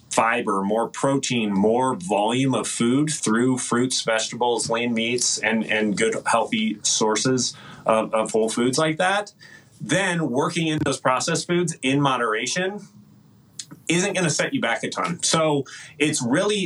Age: 30-49